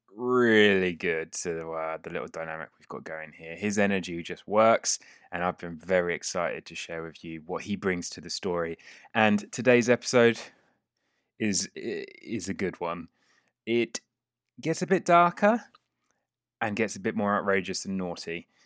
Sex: male